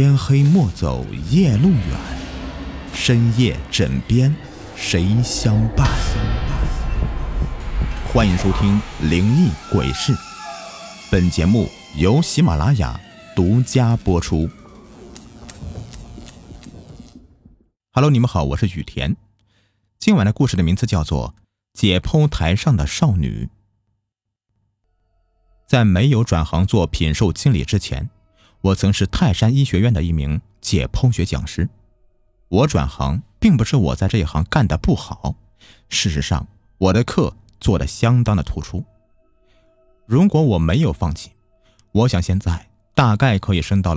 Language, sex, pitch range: Chinese, male, 90-120 Hz